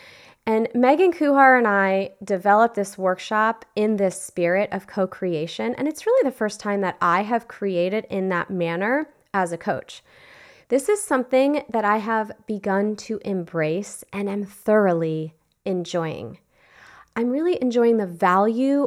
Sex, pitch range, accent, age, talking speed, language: female, 190-255 Hz, American, 20-39, 150 wpm, English